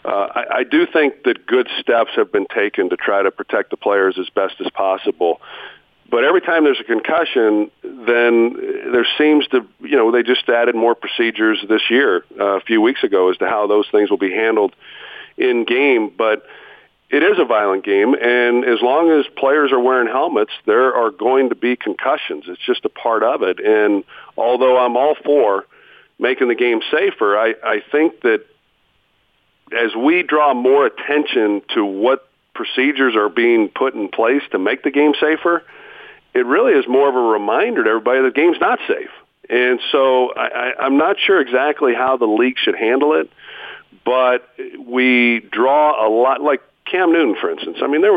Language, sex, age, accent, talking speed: English, male, 50-69, American, 190 wpm